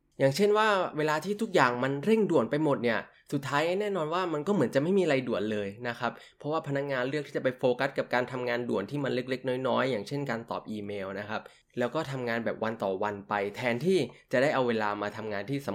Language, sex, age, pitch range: Thai, male, 20-39, 115-145 Hz